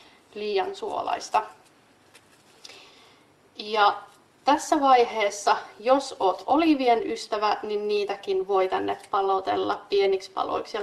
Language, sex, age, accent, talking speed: Finnish, female, 30-49, native, 95 wpm